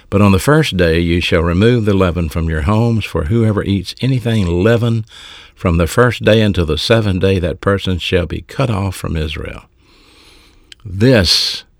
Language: English